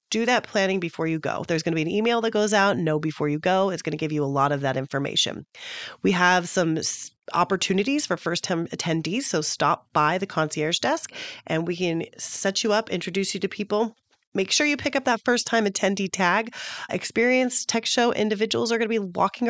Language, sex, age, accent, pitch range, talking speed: English, female, 30-49, American, 160-215 Hz, 215 wpm